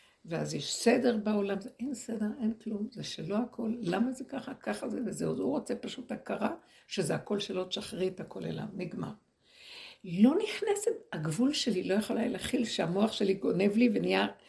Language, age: Hebrew, 60-79